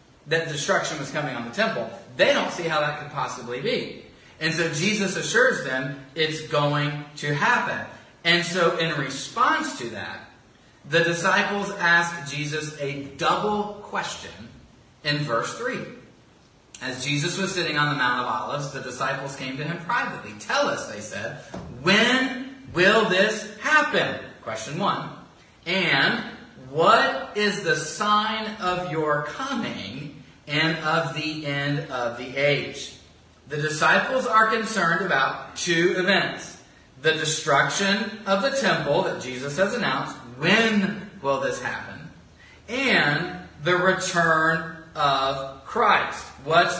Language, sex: English, male